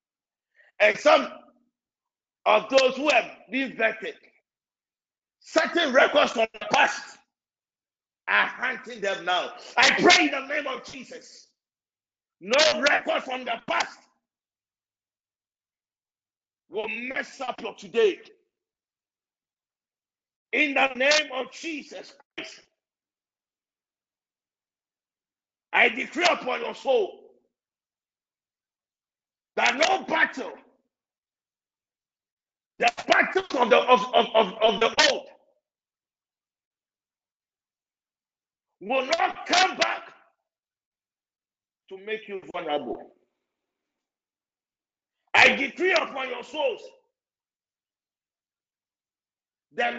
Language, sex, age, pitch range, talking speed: English, male, 50-69, 210-330 Hz, 85 wpm